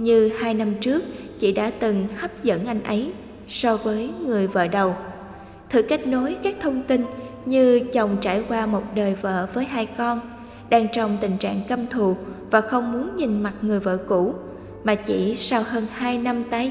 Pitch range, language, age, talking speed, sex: 215-250 Hz, Vietnamese, 20-39, 190 wpm, female